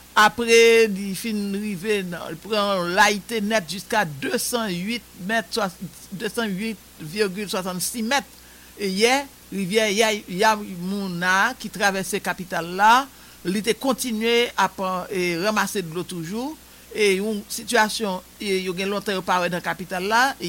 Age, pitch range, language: 60-79, 185-225 Hz, English